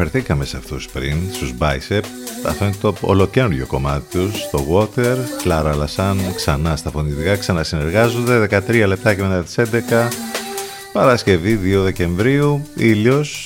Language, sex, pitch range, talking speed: Greek, male, 75-105 Hz, 135 wpm